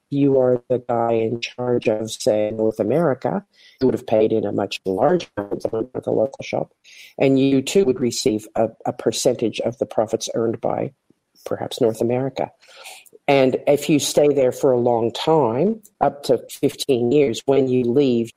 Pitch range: 115-140 Hz